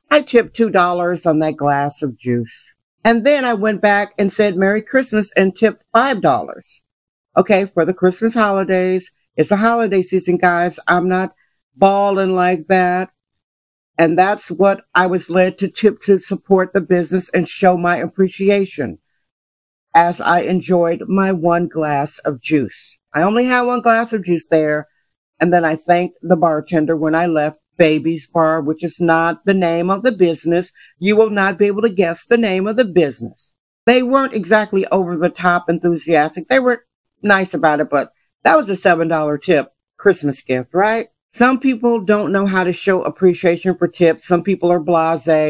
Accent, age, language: American, 60-79, English